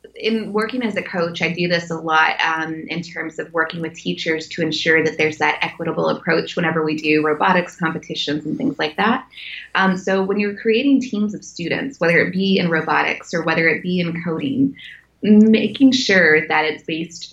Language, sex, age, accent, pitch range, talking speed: English, female, 20-39, American, 160-205 Hz, 195 wpm